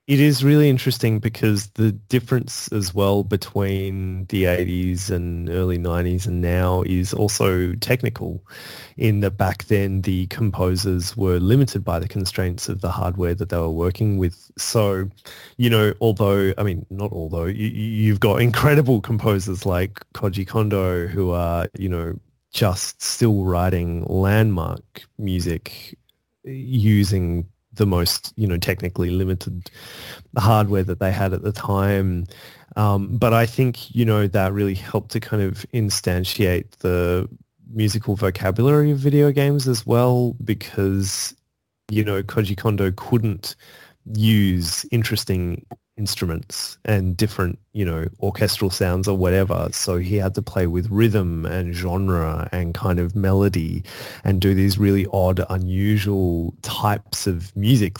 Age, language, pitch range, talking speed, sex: 20-39, English, 90-115 Hz, 140 wpm, male